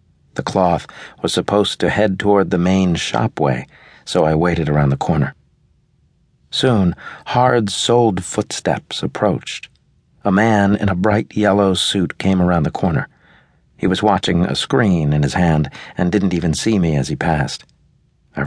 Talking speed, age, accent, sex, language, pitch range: 155 wpm, 50-69, American, male, English, 85-105 Hz